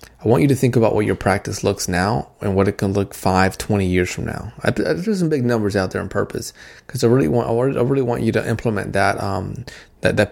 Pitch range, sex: 95-115 Hz, male